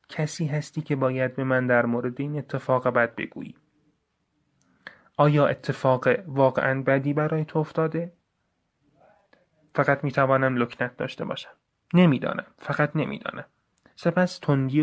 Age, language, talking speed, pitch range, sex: 30-49, Persian, 115 wpm, 125-150 Hz, male